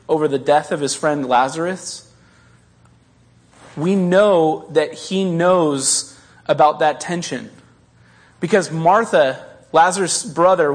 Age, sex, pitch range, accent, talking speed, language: 30-49, male, 150-205 Hz, American, 105 wpm, English